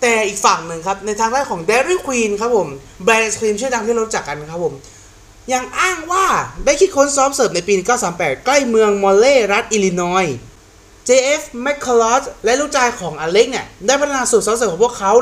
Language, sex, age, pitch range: Thai, male, 20-39, 160-245 Hz